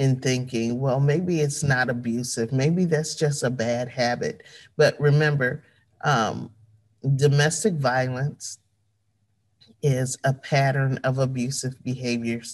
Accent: American